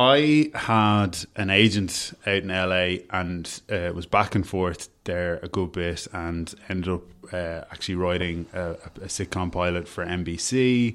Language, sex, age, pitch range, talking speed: English, male, 20-39, 90-100 Hz, 160 wpm